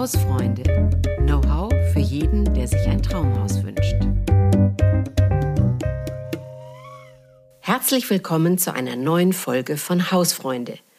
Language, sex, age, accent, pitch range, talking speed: German, female, 50-69, German, 130-190 Hz, 100 wpm